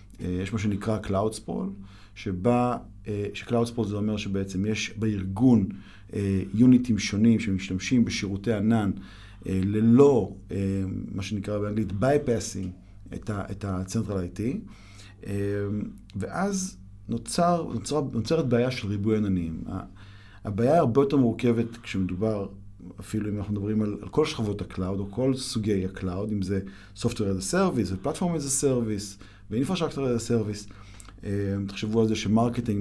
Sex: male